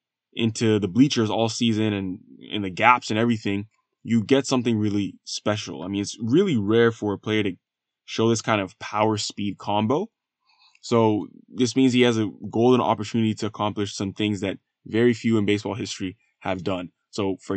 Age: 20-39